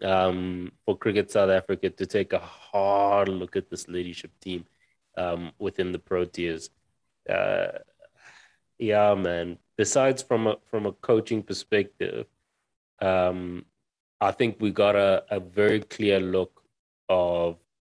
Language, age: English, 30-49